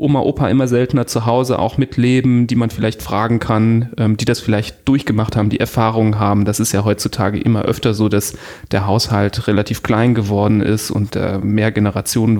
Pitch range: 110-135 Hz